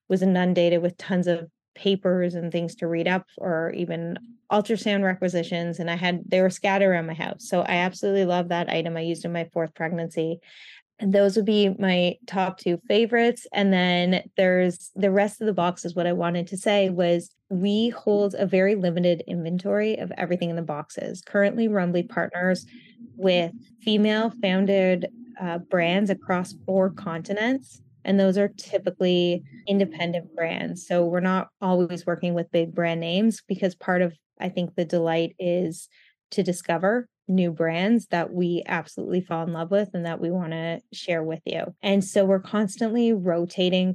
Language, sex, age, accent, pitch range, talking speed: English, female, 20-39, American, 175-200 Hz, 175 wpm